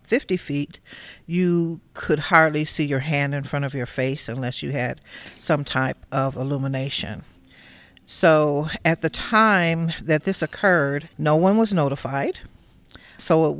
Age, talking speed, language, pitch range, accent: 50-69, 145 wpm, English, 145-165 Hz, American